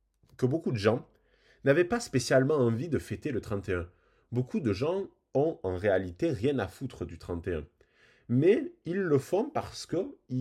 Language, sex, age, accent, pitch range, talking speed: French, male, 20-39, French, 90-120 Hz, 165 wpm